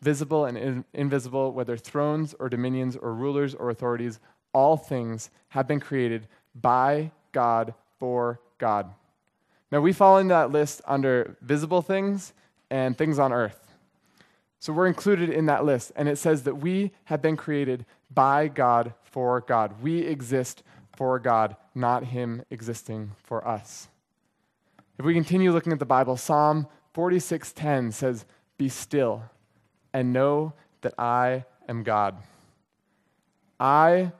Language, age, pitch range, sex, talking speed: English, 20-39, 120-150 Hz, male, 140 wpm